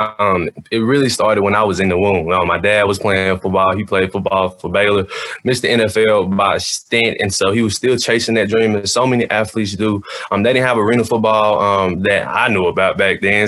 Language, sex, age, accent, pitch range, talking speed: English, male, 20-39, American, 100-120 Hz, 240 wpm